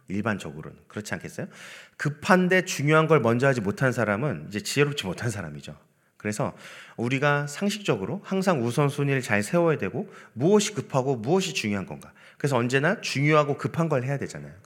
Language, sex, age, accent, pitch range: Korean, male, 30-49, native, 105-150 Hz